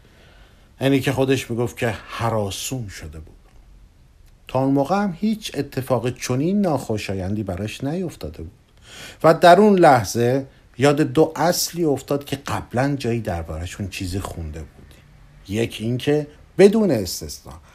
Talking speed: 130 wpm